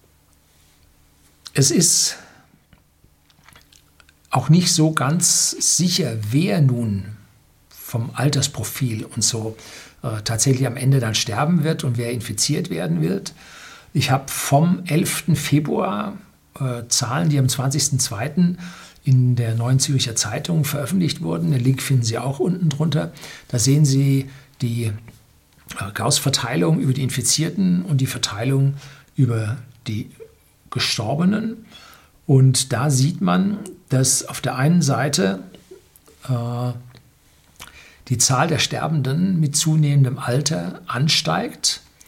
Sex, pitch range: male, 120-155 Hz